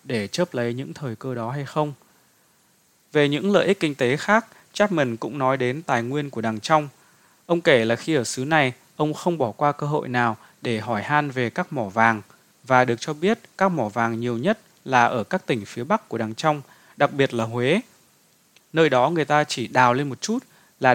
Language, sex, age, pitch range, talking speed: Vietnamese, male, 20-39, 120-160 Hz, 225 wpm